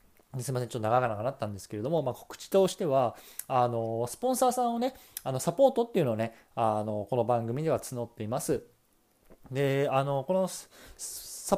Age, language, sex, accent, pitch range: 20-39, Japanese, male, native, 110-145 Hz